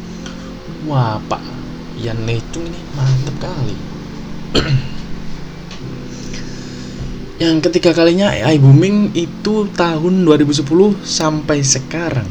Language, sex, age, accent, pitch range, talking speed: Indonesian, male, 20-39, native, 125-160 Hz, 85 wpm